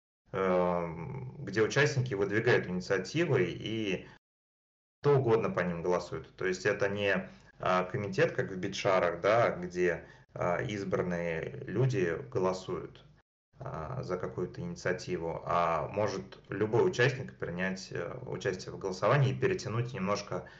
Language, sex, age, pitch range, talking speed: Russian, male, 30-49, 90-130 Hz, 110 wpm